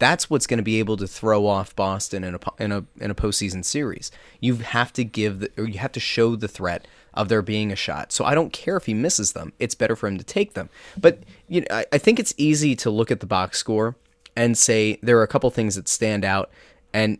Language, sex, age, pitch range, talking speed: English, male, 20-39, 105-130 Hz, 260 wpm